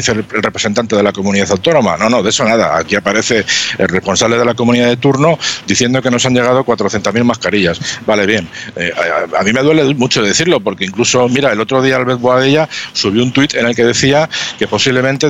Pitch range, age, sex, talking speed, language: 105-130 Hz, 50-69, male, 210 wpm, Spanish